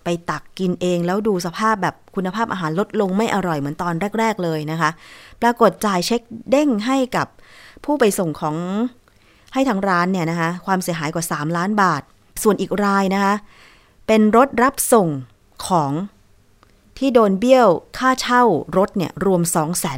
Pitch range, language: 155-205 Hz, Thai